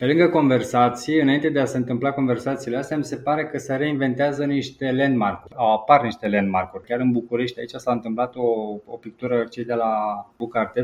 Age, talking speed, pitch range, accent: 20-39, 195 wpm, 125-170 Hz, native